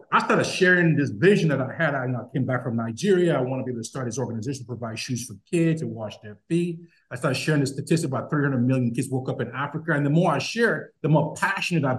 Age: 50-69